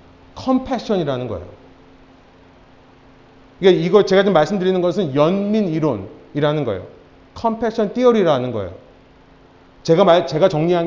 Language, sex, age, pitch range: Korean, male, 30-49, 155-220 Hz